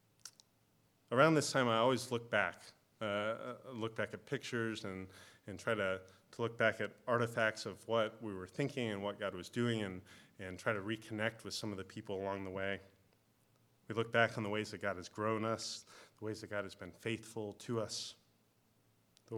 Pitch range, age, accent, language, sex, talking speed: 105-120 Hz, 30-49, American, English, male, 200 wpm